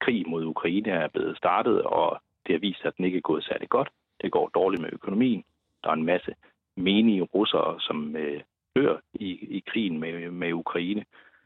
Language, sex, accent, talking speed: Danish, male, native, 195 wpm